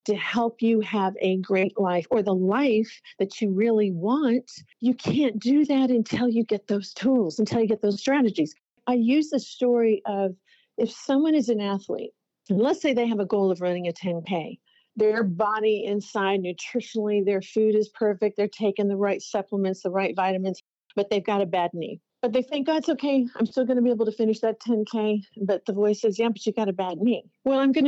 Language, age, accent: English, 50-69, American